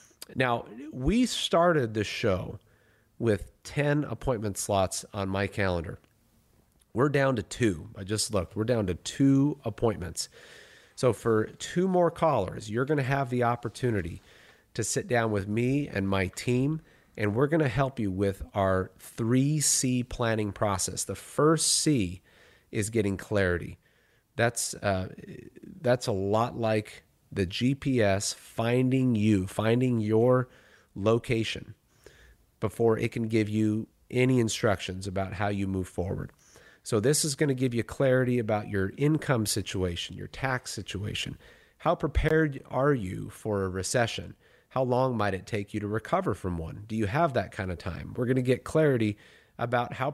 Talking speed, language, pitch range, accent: 155 wpm, English, 100-130 Hz, American